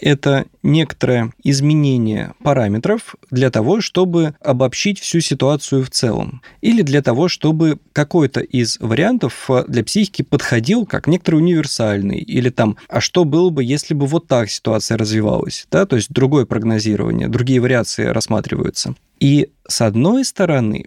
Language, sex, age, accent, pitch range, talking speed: Russian, male, 20-39, native, 115-160 Hz, 140 wpm